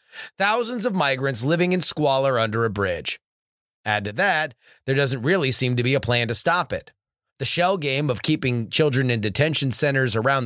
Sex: male